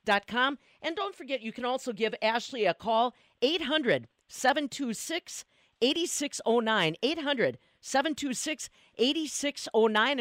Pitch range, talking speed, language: 210-280 Hz, 80 wpm, English